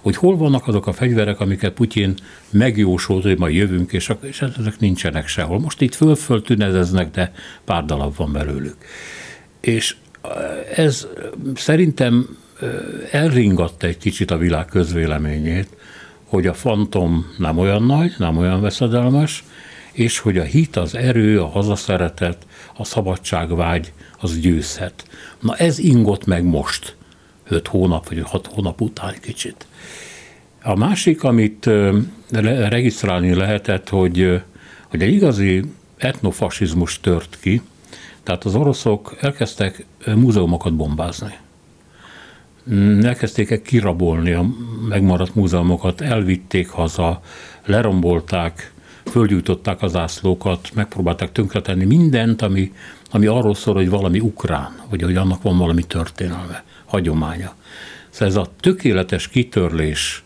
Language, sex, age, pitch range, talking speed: Hungarian, male, 60-79, 90-115 Hz, 120 wpm